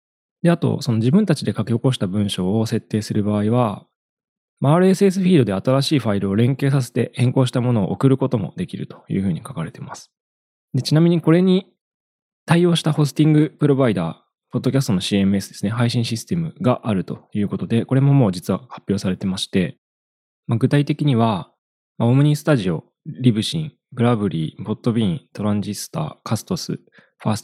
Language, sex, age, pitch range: Japanese, male, 20-39, 105-145 Hz